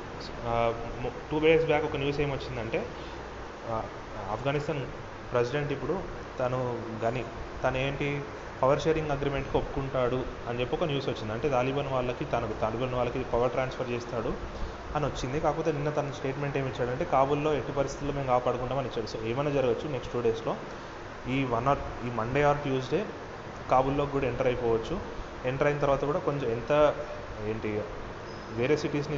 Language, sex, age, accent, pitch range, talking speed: Telugu, male, 30-49, native, 115-145 Hz, 140 wpm